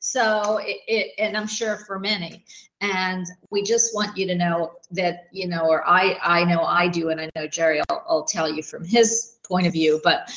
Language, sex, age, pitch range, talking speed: English, female, 50-69, 170-225 Hz, 215 wpm